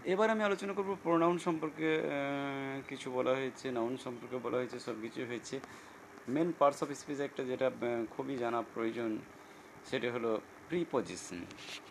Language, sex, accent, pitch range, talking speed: Bengali, male, native, 115-150 Hz, 120 wpm